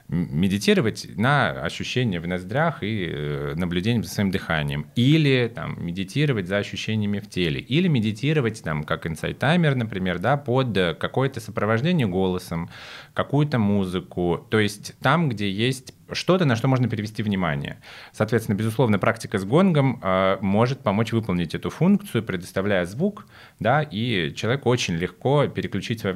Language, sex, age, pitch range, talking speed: Russian, male, 30-49, 95-135 Hz, 140 wpm